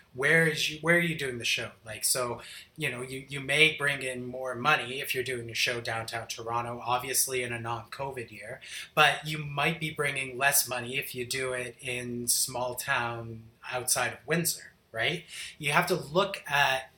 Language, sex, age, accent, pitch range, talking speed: English, male, 30-49, American, 120-150 Hz, 195 wpm